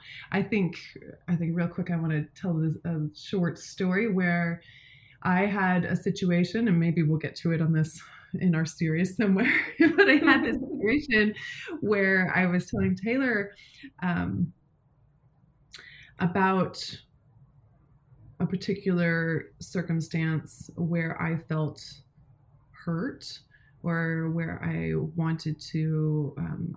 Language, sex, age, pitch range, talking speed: English, female, 20-39, 150-185 Hz, 125 wpm